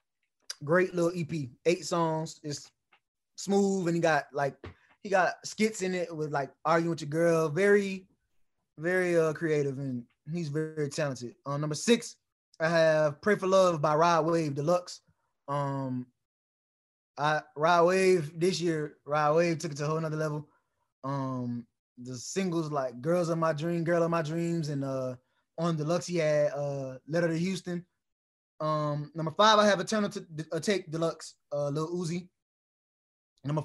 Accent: American